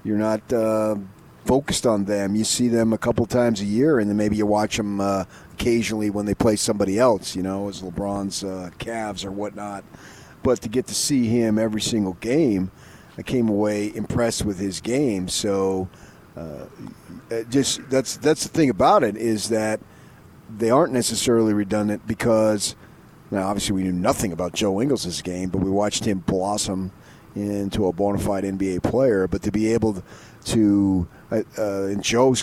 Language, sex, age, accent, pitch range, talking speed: English, male, 40-59, American, 95-115 Hz, 175 wpm